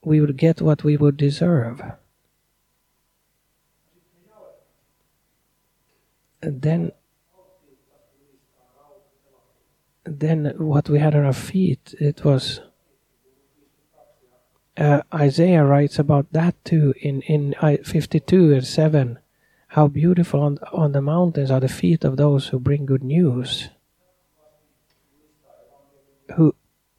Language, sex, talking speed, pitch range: Swedish, male, 100 wpm, 135-155 Hz